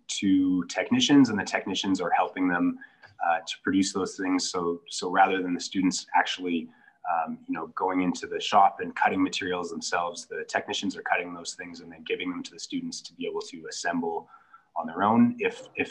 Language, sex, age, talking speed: English, male, 20-39, 205 wpm